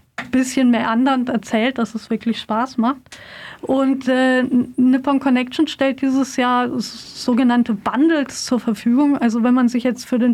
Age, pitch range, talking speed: 40-59, 235-270 Hz, 155 wpm